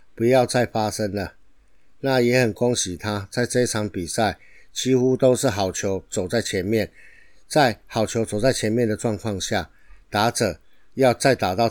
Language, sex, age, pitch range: Chinese, male, 50-69, 105-125 Hz